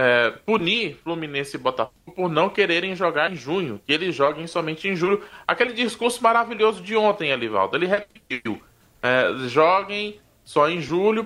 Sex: male